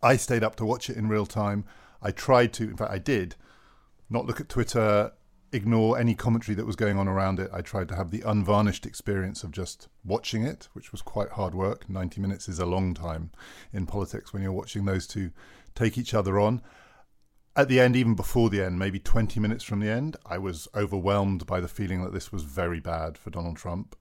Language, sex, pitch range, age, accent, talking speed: English, male, 95-120 Hz, 40-59, British, 220 wpm